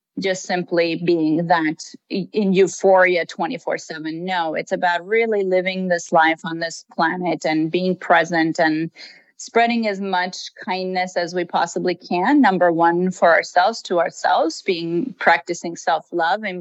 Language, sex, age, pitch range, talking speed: English, female, 30-49, 170-195 Hz, 140 wpm